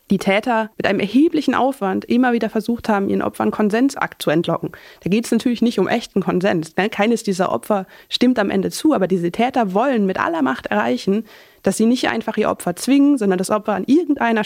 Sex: female